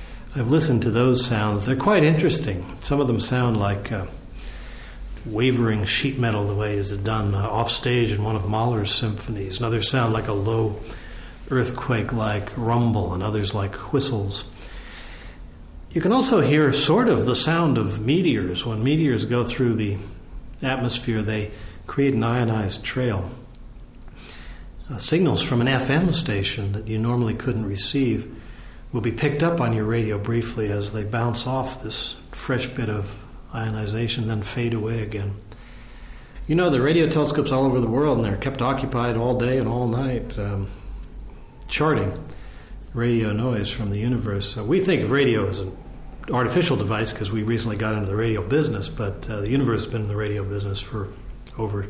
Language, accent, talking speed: English, American, 170 wpm